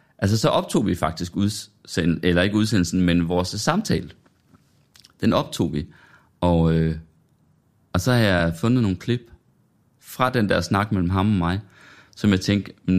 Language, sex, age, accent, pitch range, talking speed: Danish, male, 30-49, native, 85-110 Hz, 155 wpm